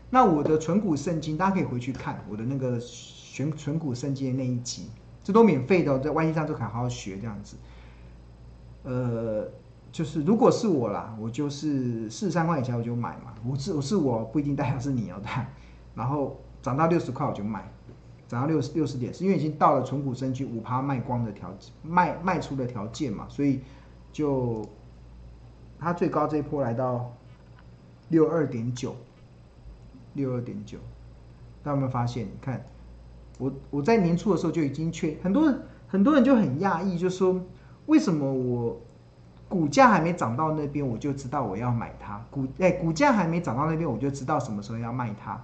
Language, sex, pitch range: Chinese, male, 115-165 Hz